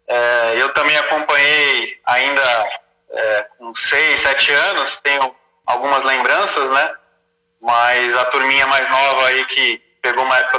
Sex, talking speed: male, 135 wpm